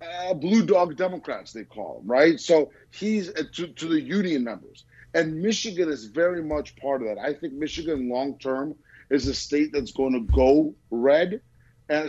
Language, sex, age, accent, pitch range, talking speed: English, male, 30-49, American, 125-170 Hz, 185 wpm